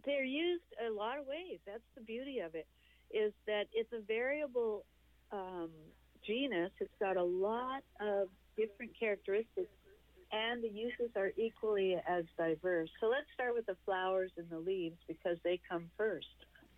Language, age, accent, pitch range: English, 60-79, American, 170-225 Hz